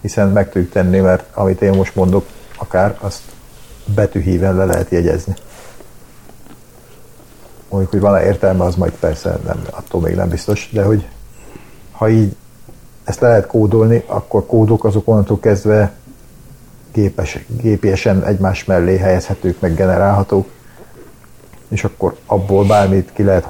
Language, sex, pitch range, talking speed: Hungarian, male, 95-110 Hz, 130 wpm